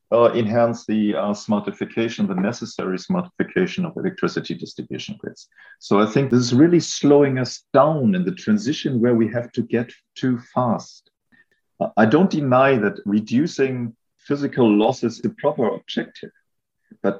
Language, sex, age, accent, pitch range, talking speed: English, male, 50-69, German, 105-135 Hz, 150 wpm